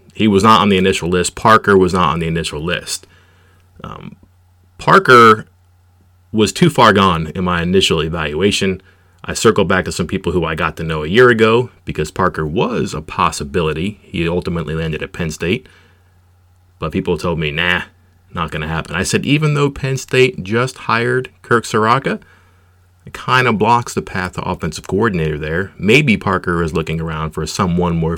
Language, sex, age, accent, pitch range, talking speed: English, male, 30-49, American, 85-100 Hz, 185 wpm